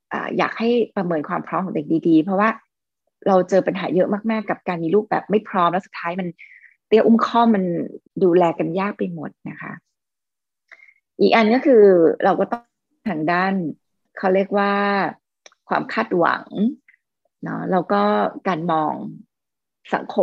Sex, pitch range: female, 175-220 Hz